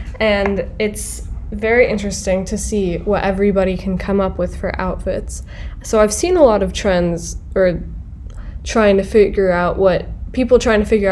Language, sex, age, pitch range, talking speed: English, female, 10-29, 170-210 Hz, 165 wpm